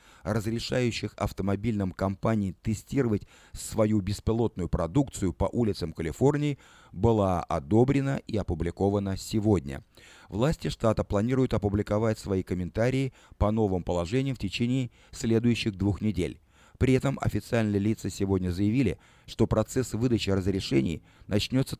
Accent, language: native, Russian